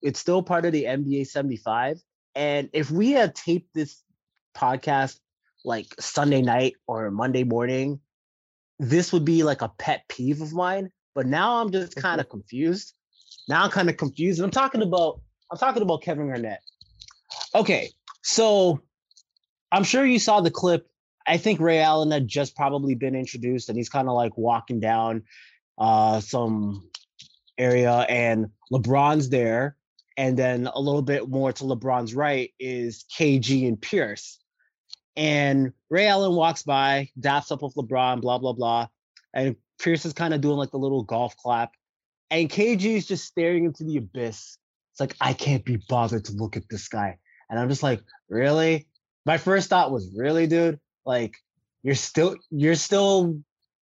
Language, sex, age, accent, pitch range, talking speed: English, male, 20-39, American, 125-165 Hz, 165 wpm